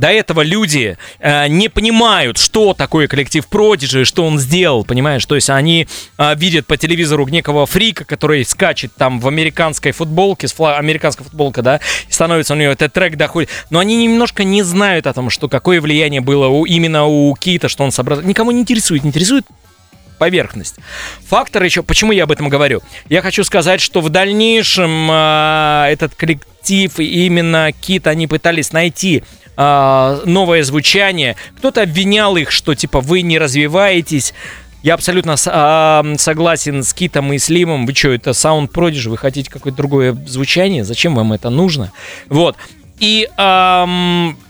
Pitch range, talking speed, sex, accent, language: 145-180 Hz, 165 wpm, male, native, Russian